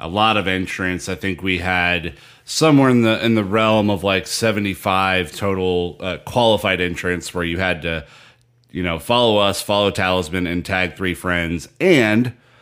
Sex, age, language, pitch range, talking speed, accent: male, 30-49, English, 90-105 Hz, 175 wpm, American